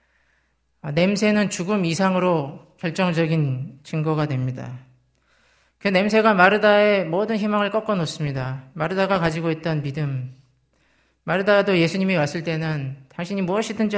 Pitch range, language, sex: 125-185 Hz, Korean, male